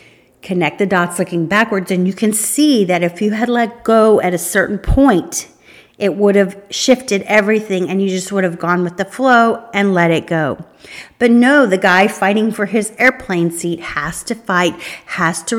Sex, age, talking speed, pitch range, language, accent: female, 40-59, 195 wpm, 170-215 Hz, English, American